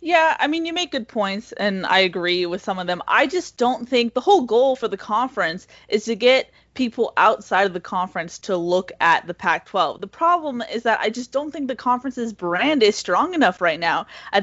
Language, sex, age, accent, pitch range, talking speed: English, female, 20-39, American, 190-265 Hz, 225 wpm